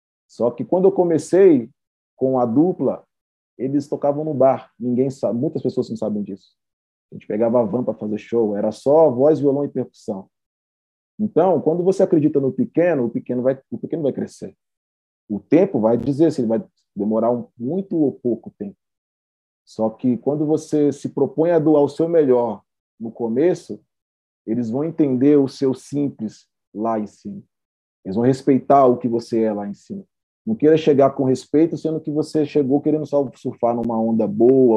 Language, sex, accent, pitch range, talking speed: Portuguese, male, Brazilian, 115-155 Hz, 180 wpm